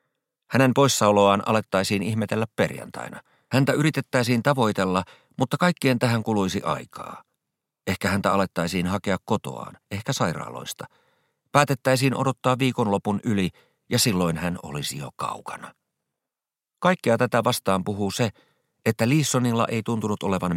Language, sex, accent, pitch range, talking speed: Finnish, male, native, 90-130 Hz, 115 wpm